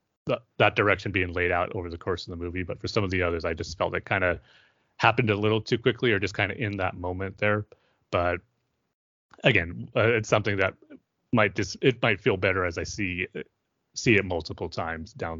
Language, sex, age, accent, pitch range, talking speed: English, male, 30-49, American, 90-105 Hz, 220 wpm